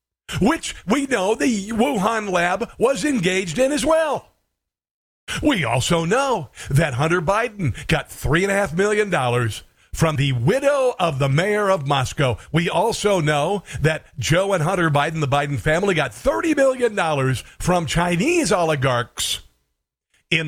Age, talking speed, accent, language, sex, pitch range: 50-69, 150 wpm, American, English, male, 140-185 Hz